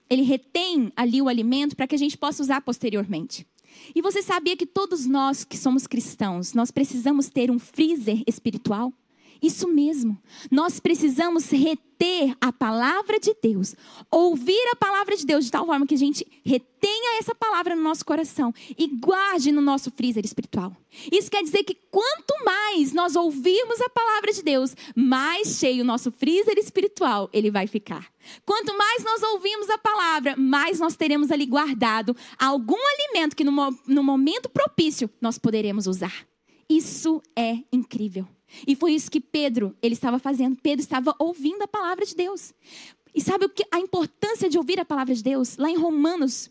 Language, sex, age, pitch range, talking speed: Portuguese, female, 10-29, 250-345 Hz, 170 wpm